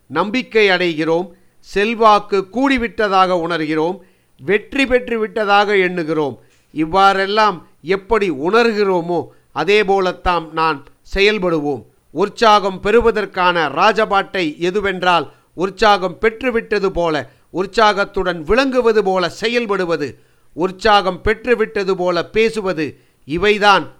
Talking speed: 80 wpm